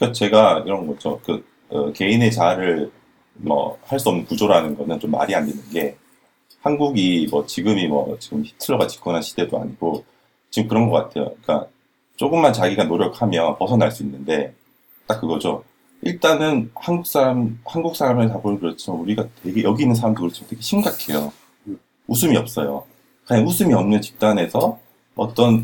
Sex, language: male, Korean